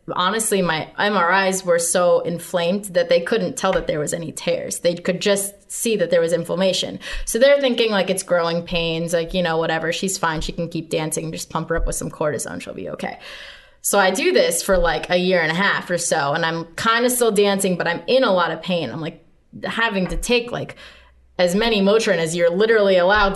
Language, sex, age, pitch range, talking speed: English, female, 20-39, 170-205 Hz, 230 wpm